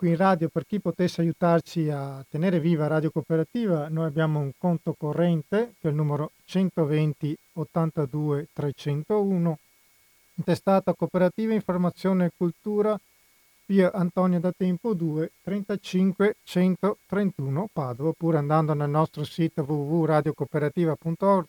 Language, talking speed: Italian, 120 wpm